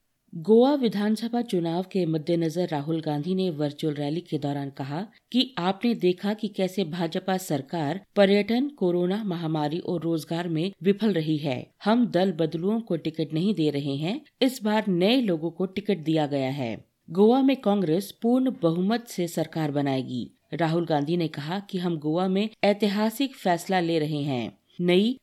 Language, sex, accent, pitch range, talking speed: Hindi, female, native, 160-215 Hz, 165 wpm